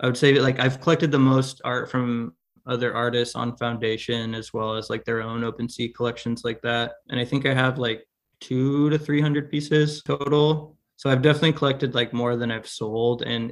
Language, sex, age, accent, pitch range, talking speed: English, male, 20-39, American, 115-130 Hz, 205 wpm